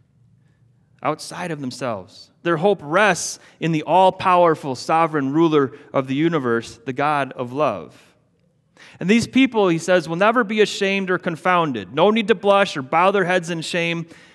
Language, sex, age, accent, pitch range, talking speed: English, male, 30-49, American, 150-195 Hz, 165 wpm